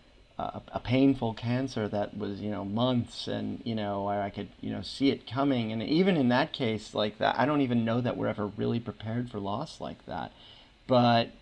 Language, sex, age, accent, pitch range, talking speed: English, male, 30-49, American, 110-135 Hz, 210 wpm